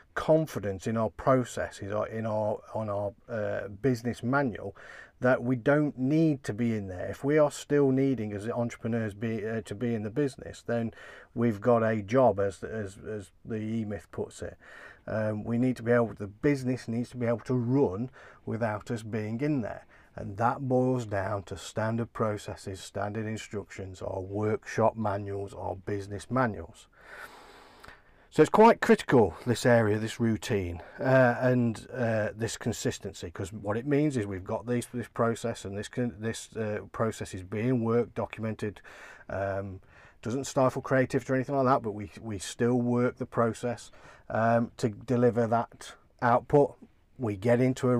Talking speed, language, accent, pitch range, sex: 170 wpm, English, British, 105-125 Hz, male